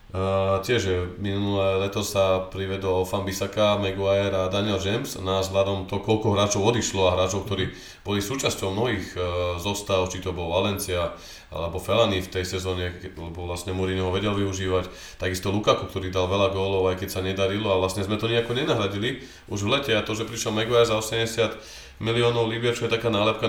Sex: male